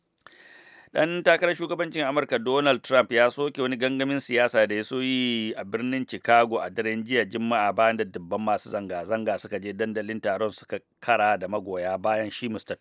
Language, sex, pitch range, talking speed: English, male, 105-125 Hz, 165 wpm